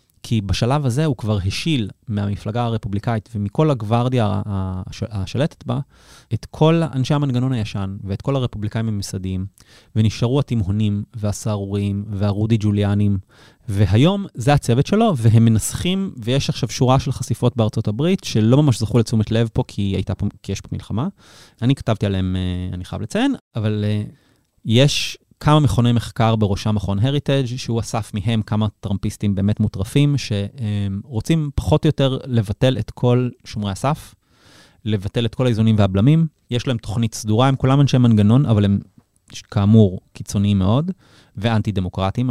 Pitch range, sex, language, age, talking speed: 105-130 Hz, male, Hebrew, 30-49, 145 wpm